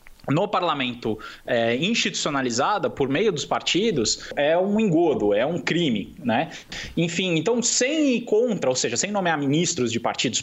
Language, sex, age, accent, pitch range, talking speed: Portuguese, male, 20-39, Brazilian, 140-230 Hz, 155 wpm